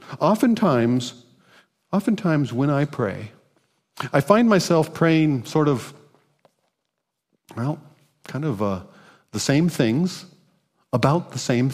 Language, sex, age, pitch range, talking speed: English, male, 50-69, 145-200 Hz, 105 wpm